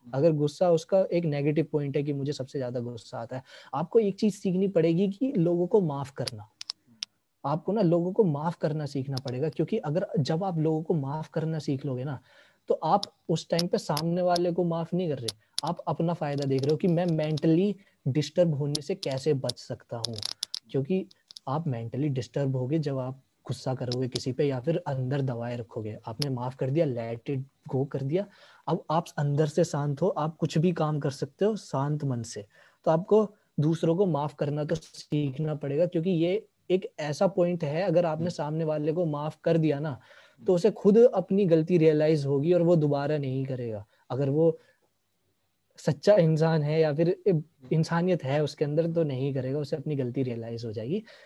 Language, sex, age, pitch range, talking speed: Hindi, male, 20-39, 135-175 Hz, 200 wpm